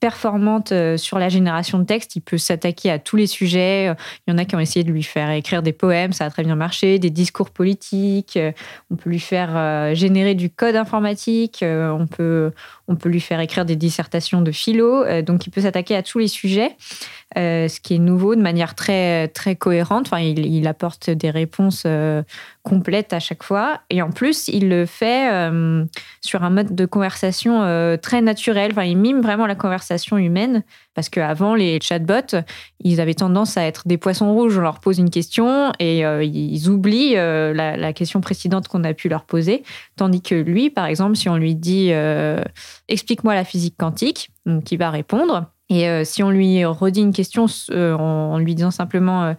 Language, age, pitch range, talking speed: French, 20-39, 165-205 Hz, 200 wpm